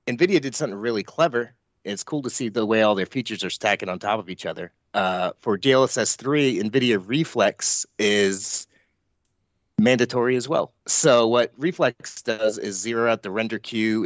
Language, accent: English, American